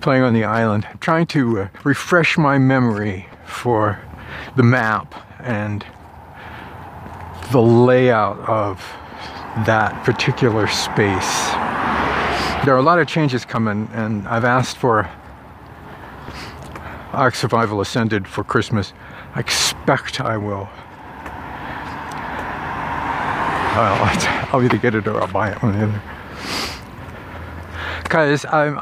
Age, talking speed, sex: 50-69, 105 wpm, male